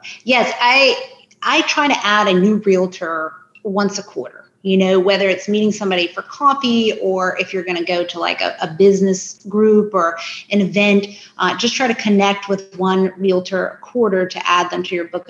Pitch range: 185-230 Hz